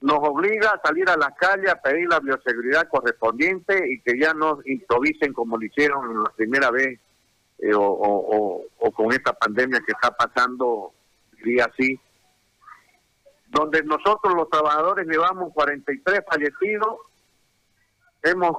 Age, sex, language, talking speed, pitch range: 50-69, male, Spanish, 140 wpm, 135-185 Hz